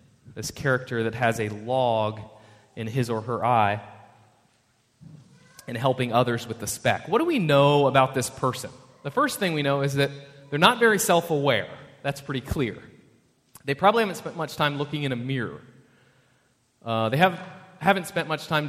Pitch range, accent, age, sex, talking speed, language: 120-155 Hz, American, 30-49, male, 175 wpm, English